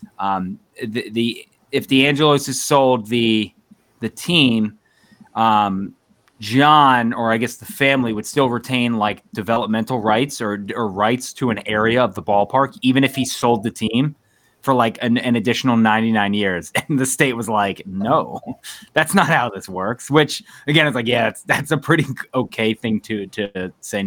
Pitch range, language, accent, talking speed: 110-145 Hz, English, American, 175 wpm